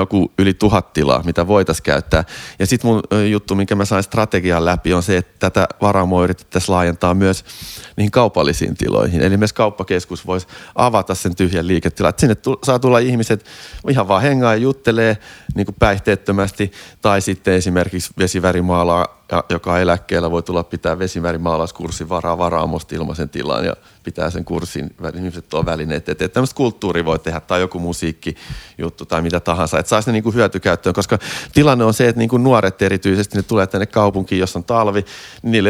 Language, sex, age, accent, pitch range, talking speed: Finnish, male, 30-49, native, 85-105 Hz, 175 wpm